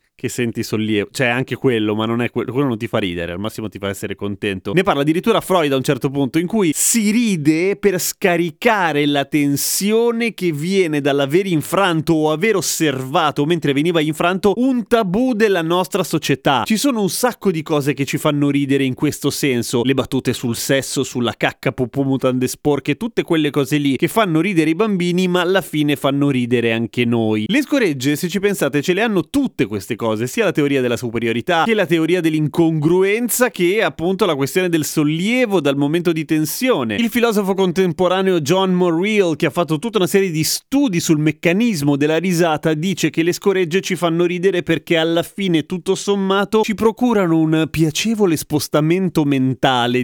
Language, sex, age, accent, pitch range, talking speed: Italian, male, 30-49, native, 140-195 Hz, 185 wpm